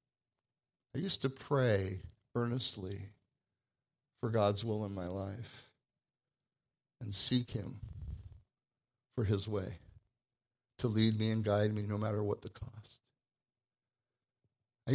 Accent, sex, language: American, male, English